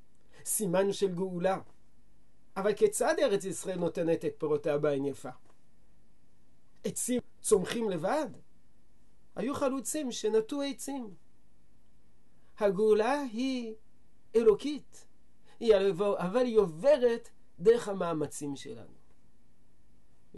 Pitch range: 145-225 Hz